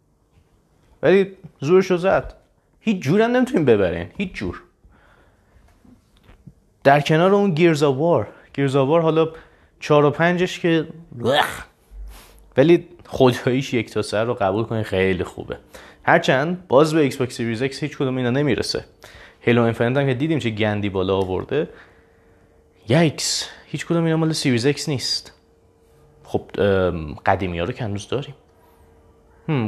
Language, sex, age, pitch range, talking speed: Persian, male, 30-49, 105-165 Hz, 125 wpm